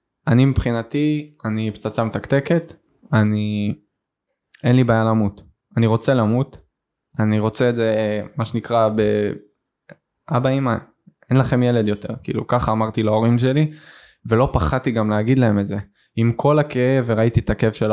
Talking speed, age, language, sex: 145 wpm, 20-39, Hebrew, male